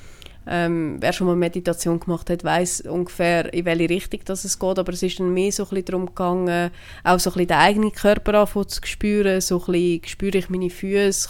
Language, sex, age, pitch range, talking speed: German, female, 20-39, 180-205 Hz, 220 wpm